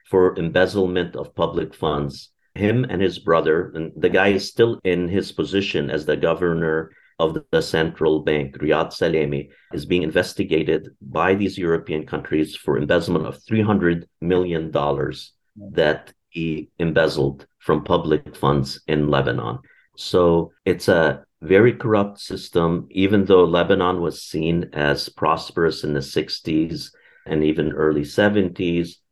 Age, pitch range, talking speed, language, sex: 50-69, 80-95 Hz, 135 wpm, English, male